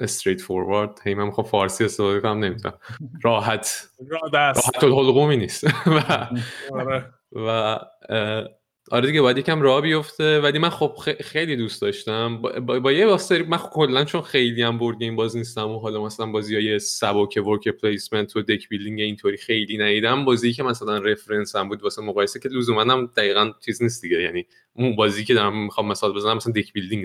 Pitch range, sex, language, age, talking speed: 105-130 Hz, male, Persian, 20-39, 170 wpm